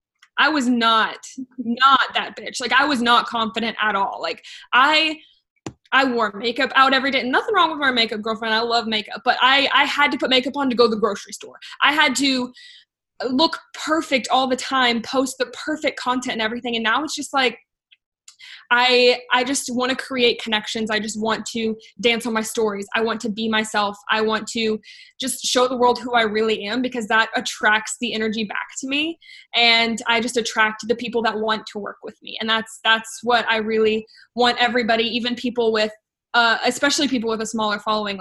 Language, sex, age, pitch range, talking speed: English, female, 20-39, 225-275 Hz, 205 wpm